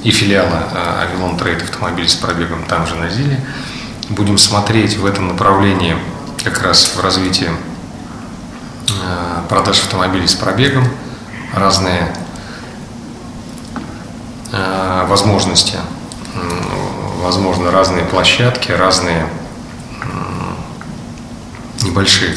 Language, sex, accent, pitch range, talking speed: Russian, male, native, 90-105 Hz, 85 wpm